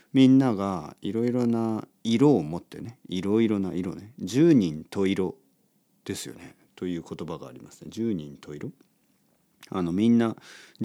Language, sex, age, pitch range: Japanese, male, 40-59, 90-125 Hz